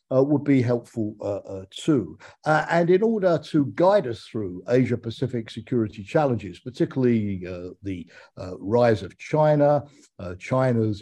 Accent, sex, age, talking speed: British, male, 50-69, 145 wpm